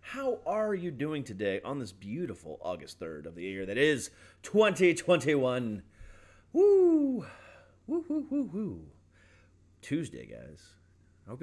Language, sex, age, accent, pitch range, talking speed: English, male, 30-49, American, 90-115 Hz, 130 wpm